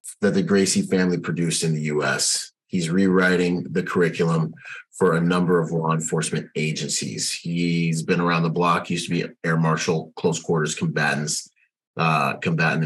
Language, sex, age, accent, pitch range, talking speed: English, male, 30-49, American, 80-90 Hz, 160 wpm